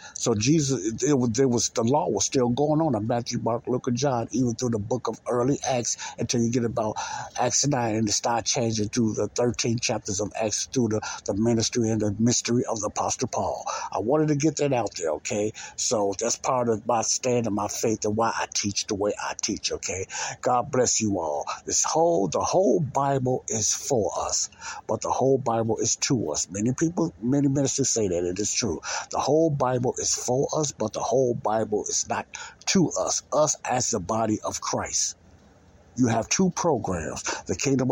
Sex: male